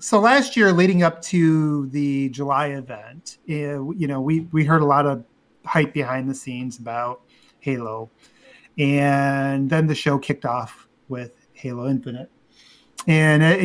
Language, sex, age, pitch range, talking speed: English, male, 30-49, 140-170 Hz, 155 wpm